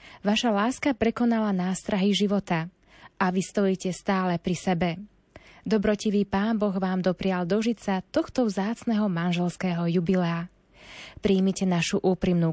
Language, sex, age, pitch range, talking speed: Slovak, female, 20-39, 175-215 Hz, 115 wpm